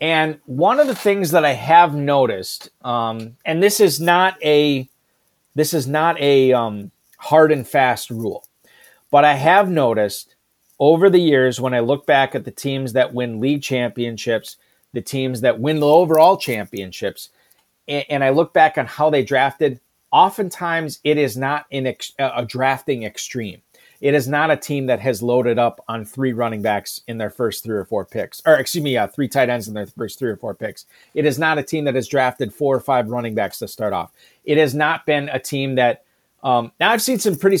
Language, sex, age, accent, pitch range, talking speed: English, male, 40-59, American, 125-155 Hz, 205 wpm